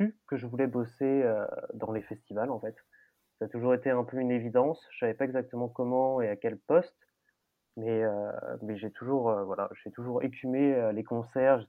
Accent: French